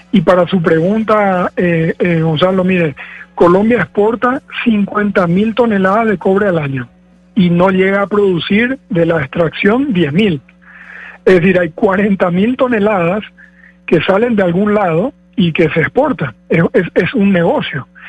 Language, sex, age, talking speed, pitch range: Spanish, male, 50-69, 145 wpm, 170-200 Hz